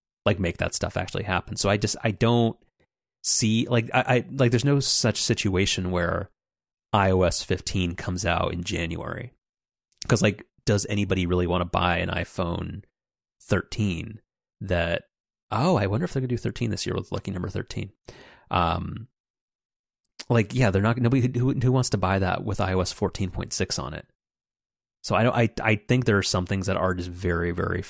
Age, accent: 30-49, American